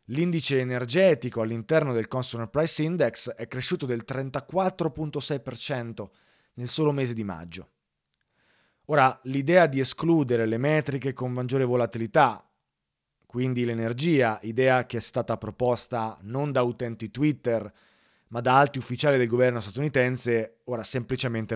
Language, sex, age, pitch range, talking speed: Italian, male, 30-49, 110-135 Hz, 125 wpm